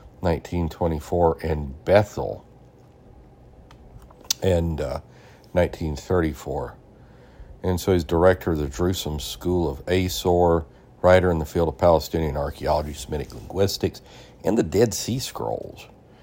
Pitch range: 75-90 Hz